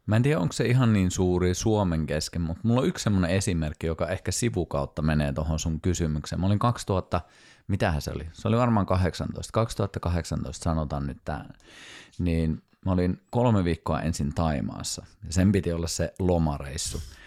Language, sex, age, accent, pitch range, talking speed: Finnish, male, 30-49, native, 80-110 Hz, 175 wpm